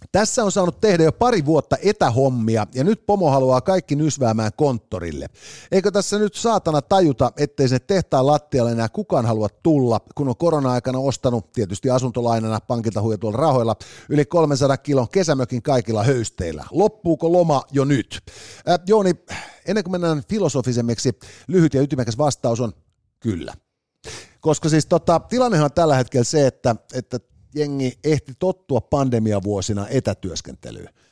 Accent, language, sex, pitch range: native, Finnish, male, 115-155 Hz